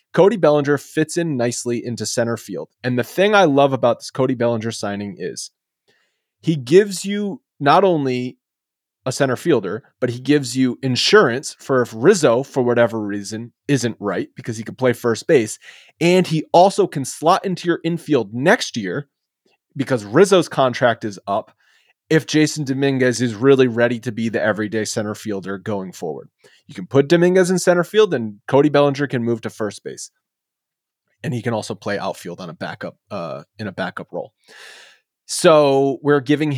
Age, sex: 30-49, male